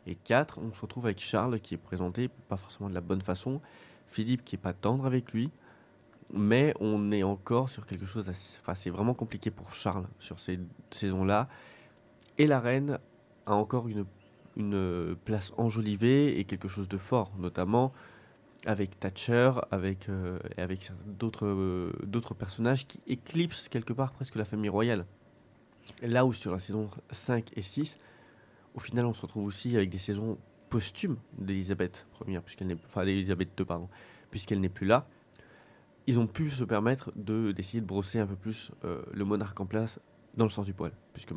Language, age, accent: French, 20-39, French